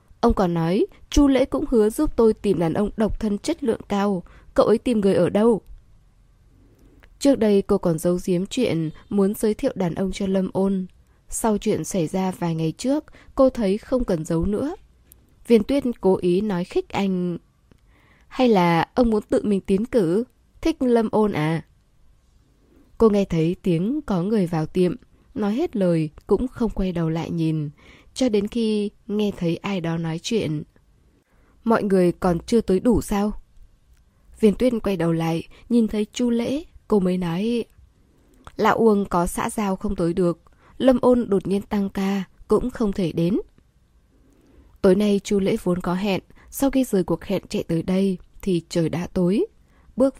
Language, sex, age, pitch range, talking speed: Vietnamese, female, 20-39, 175-225 Hz, 185 wpm